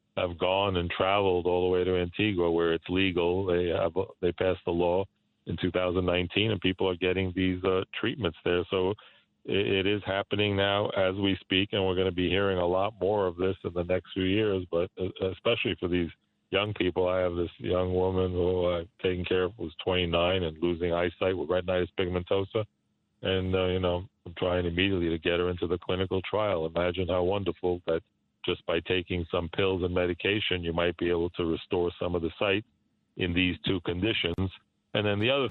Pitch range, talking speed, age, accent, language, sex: 90-95 Hz, 200 wpm, 40-59, American, English, male